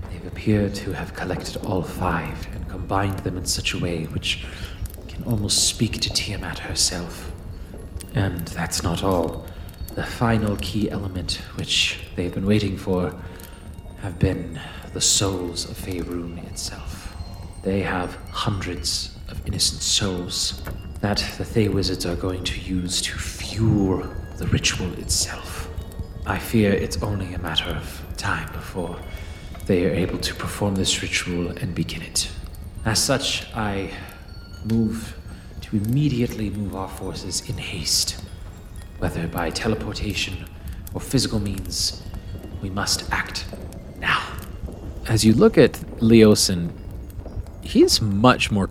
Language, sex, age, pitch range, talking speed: English, male, 40-59, 85-100 Hz, 130 wpm